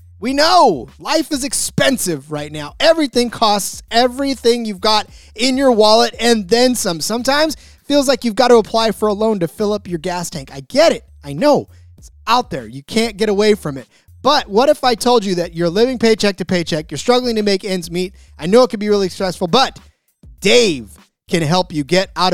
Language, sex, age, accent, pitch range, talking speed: English, male, 30-49, American, 175-245 Hz, 220 wpm